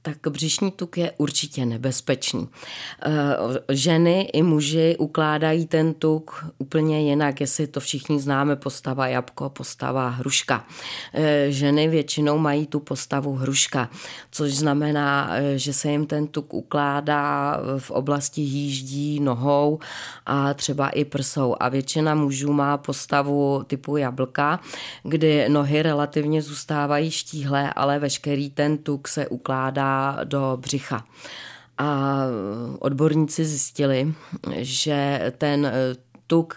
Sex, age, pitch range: female, 20-39, 135-150 Hz